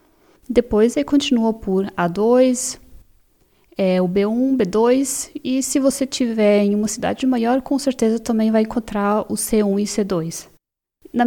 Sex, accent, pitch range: female, Brazilian, 205-250 Hz